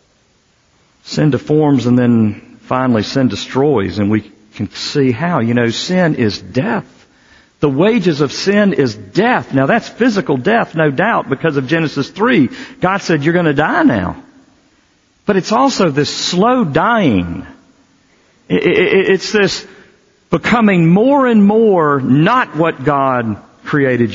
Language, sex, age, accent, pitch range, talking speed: English, male, 50-69, American, 110-170 Hz, 140 wpm